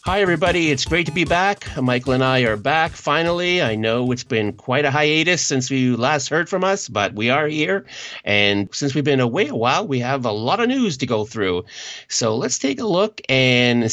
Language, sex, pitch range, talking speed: English, male, 115-155 Hz, 225 wpm